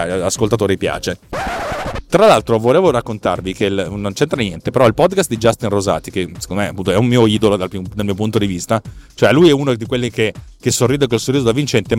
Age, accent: 30-49, native